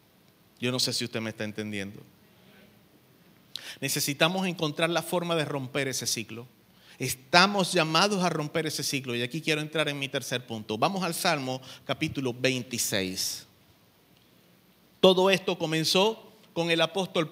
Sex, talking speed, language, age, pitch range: male, 140 wpm, Spanish, 50-69, 140-210 Hz